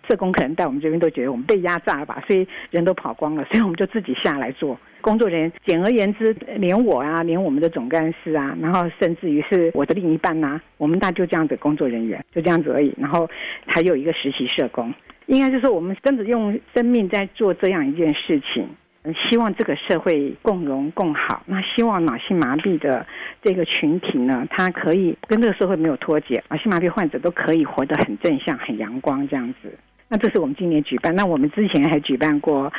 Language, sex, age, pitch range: Chinese, female, 50-69, 155-210 Hz